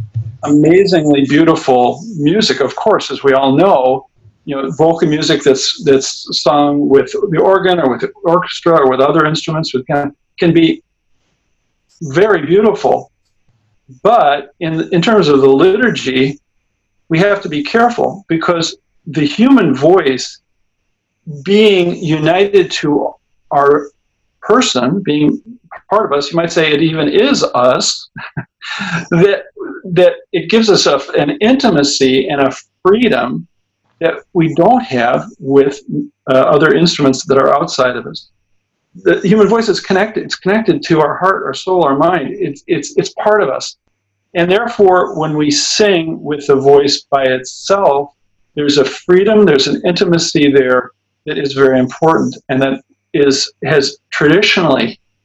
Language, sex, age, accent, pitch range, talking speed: English, male, 50-69, American, 135-180 Hz, 145 wpm